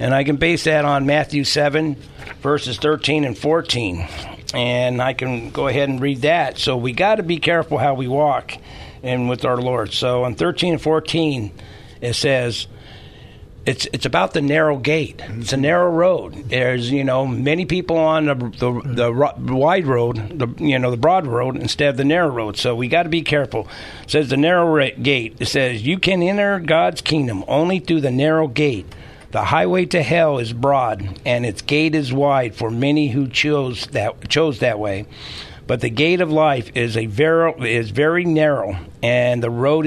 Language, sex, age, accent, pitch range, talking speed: English, male, 60-79, American, 120-150 Hz, 195 wpm